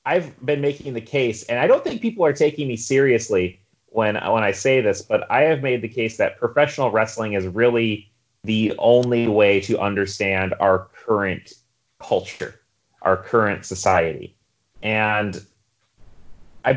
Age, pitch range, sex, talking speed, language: 30-49, 95-120 Hz, male, 155 wpm, English